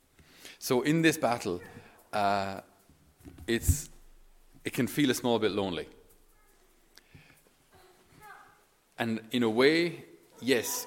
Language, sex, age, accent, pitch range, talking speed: English, male, 30-49, Irish, 95-125 Hz, 100 wpm